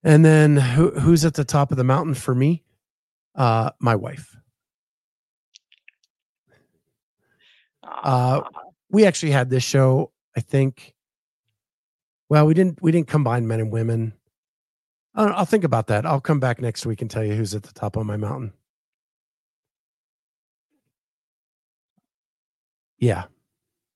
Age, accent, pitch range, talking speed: 50-69, American, 115-155 Hz, 135 wpm